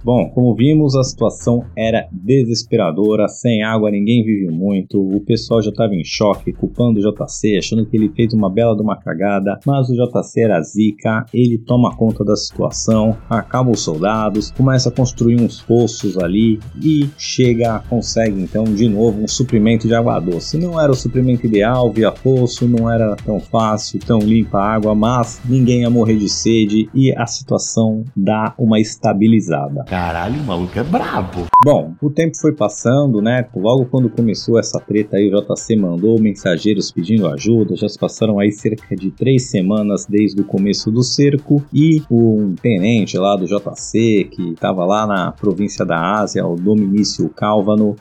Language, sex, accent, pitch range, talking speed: Portuguese, male, Brazilian, 105-120 Hz, 175 wpm